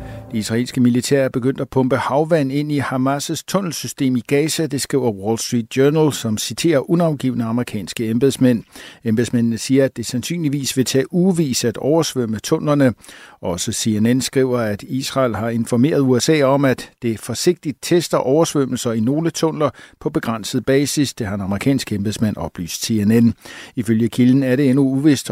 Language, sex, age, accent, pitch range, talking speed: Danish, male, 60-79, native, 115-140 Hz, 165 wpm